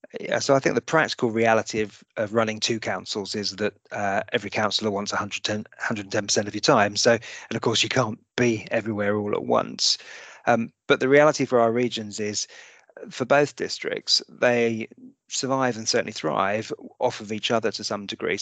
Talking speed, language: 185 wpm, English